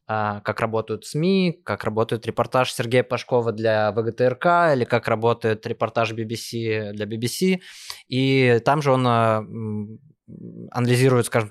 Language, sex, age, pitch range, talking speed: Russian, male, 20-39, 110-130 Hz, 120 wpm